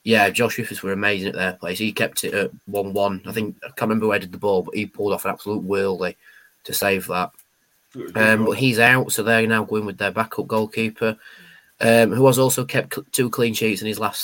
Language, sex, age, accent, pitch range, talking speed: English, male, 20-39, British, 105-120 Hz, 235 wpm